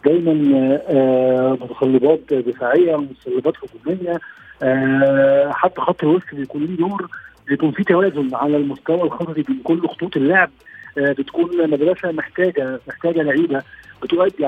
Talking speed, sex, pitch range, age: 120 wpm, male, 140-195 Hz, 50-69